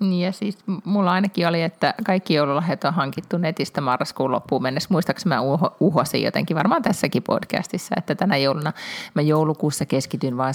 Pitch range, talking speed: 135-180 Hz, 160 wpm